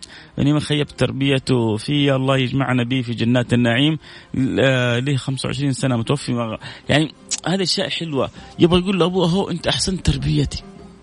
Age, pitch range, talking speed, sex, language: 30-49, 125-155 Hz, 145 wpm, male, Arabic